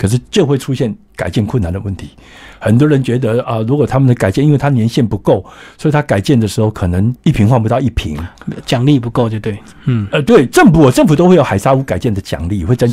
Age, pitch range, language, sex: 60-79, 110-160 Hz, Chinese, male